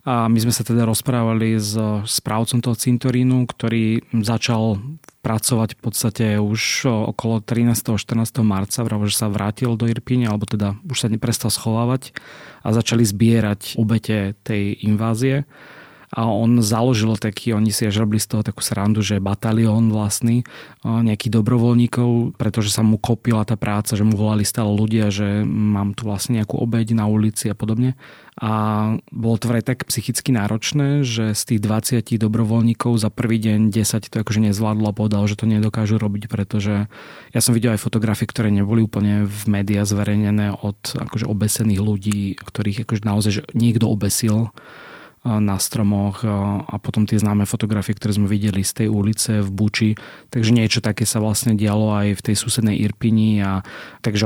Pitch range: 105-115 Hz